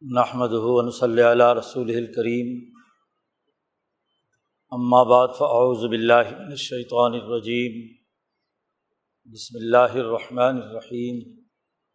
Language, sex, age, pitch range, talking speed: Urdu, male, 50-69, 120-125 Hz, 70 wpm